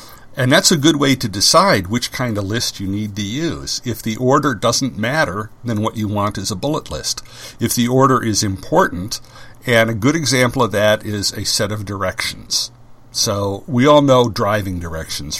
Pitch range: 105-130 Hz